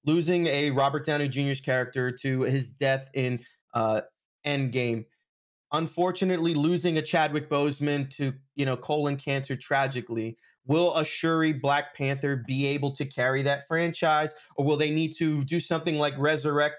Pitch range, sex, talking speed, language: 135-170 Hz, male, 155 wpm, English